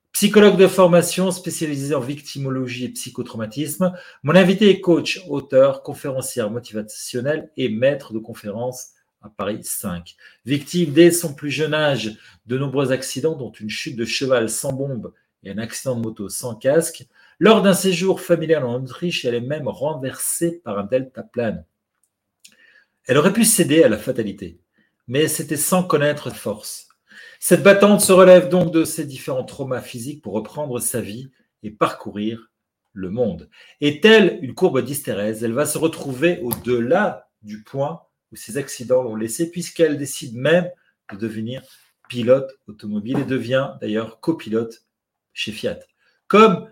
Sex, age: male, 40-59